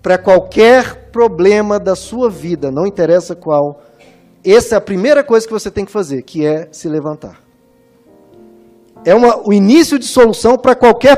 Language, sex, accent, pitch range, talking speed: Portuguese, male, Brazilian, 170-230 Hz, 160 wpm